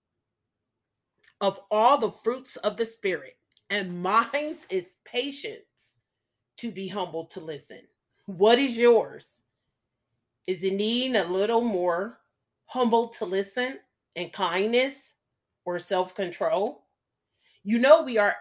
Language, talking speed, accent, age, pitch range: English, 115 wpm, American, 40-59, 190-265 Hz